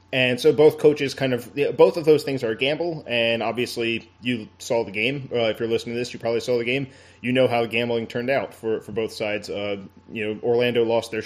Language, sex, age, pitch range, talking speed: English, male, 30-49, 110-125 Hz, 255 wpm